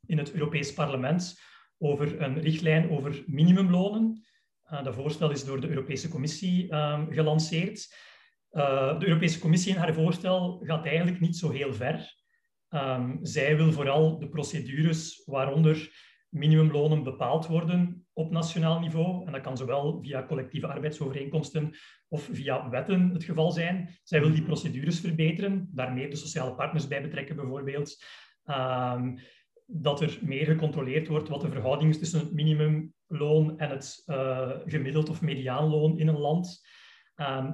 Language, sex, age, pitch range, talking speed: Dutch, male, 30-49, 145-170 Hz, 150 wpm